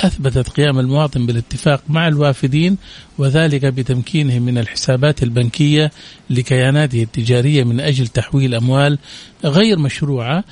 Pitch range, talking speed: 135-175 Hz, 110 wpm